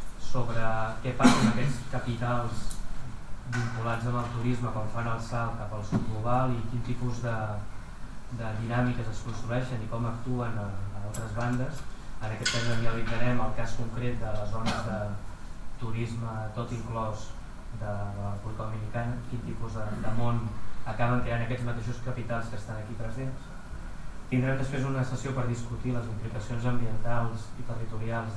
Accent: Spanish